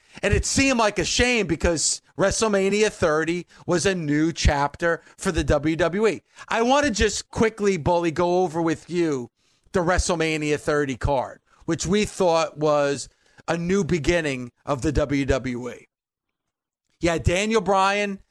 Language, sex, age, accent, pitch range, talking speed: English, male, 40-59, American, 150-190 Hz, 145 wpm